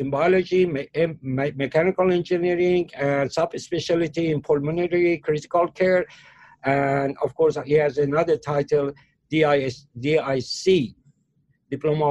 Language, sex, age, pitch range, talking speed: English, male, 60-79, 140-165 Hz, 100 wpm